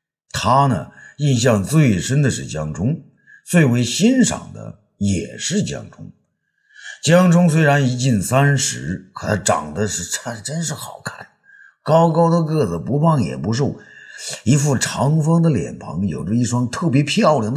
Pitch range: 115-175 Hz